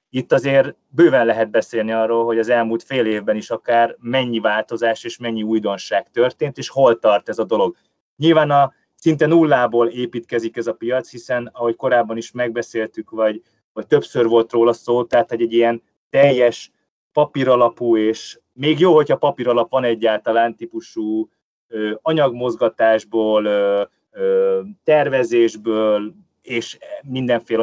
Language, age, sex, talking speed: Hungarian, 30-49, male, 135 wpm